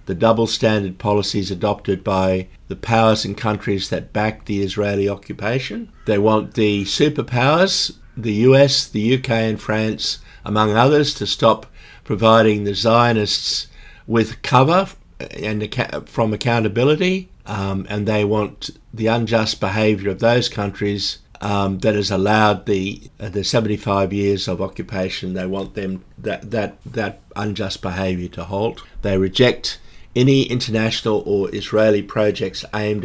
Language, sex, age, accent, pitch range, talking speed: English, male, 60-79, Australian, 100-115 Hz, 140 wpm